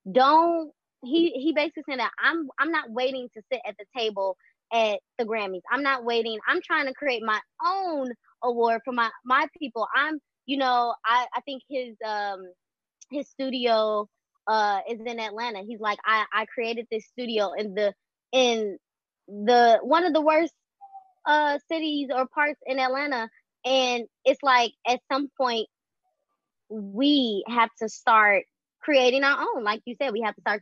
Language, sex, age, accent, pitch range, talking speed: English, female, 20-39, American, 210-270 Hz, 170 wpm